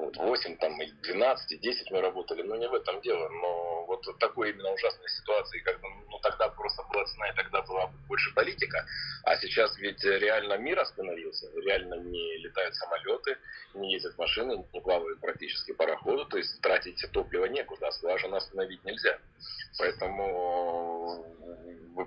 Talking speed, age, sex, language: 160 wpm, 30-49, male, Russian